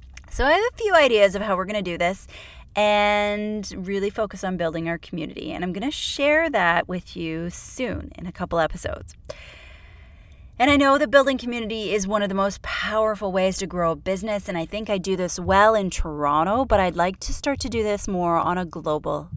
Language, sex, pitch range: English, female, 170-220 Hz